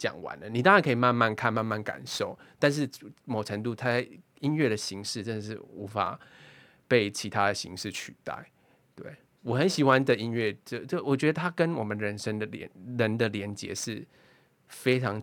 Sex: male